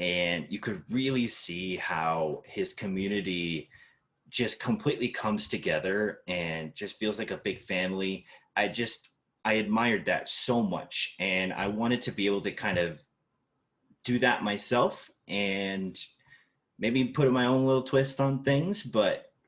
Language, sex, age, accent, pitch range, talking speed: English, male, 30-49, American, 90-120 Hz, 150 wpm